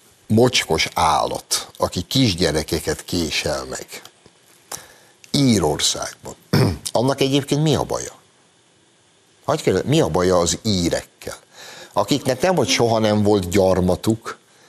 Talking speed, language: 100 wpm, Hungarian